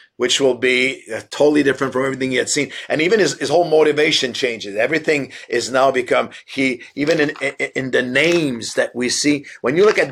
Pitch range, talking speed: 130-160 Hz, 210 wpm